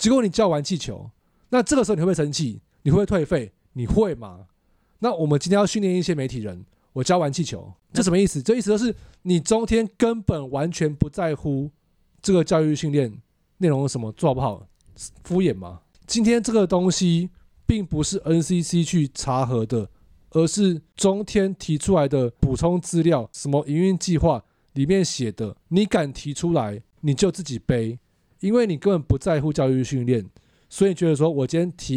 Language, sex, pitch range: Chinese, male, 125-180 Hz